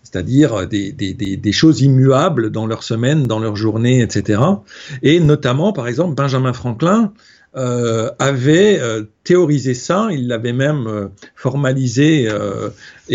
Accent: French